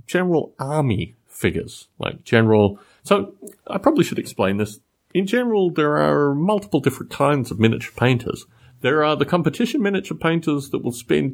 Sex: male